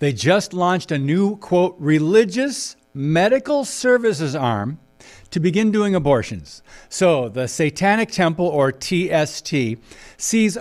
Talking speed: 120 wpm